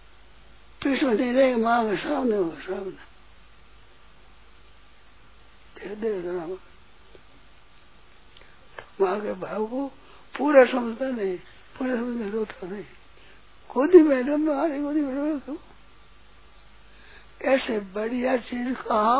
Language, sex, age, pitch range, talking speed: Hindi, male, 60-79, 195-250 Hz, 85 wpm